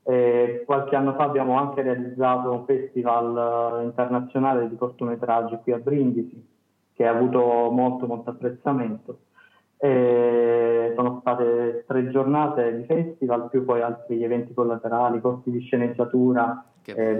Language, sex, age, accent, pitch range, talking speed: Italian, male, 20-39, native, 120-130 Hz, 135 wpm